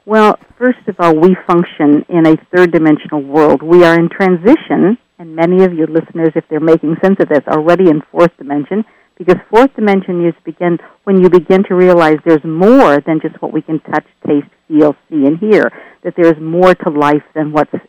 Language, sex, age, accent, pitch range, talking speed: English, female, 50-69, American, 155-185 Hz, 200 wpm